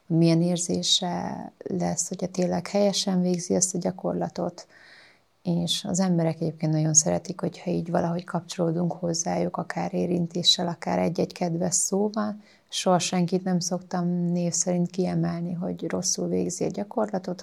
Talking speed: 140 wpm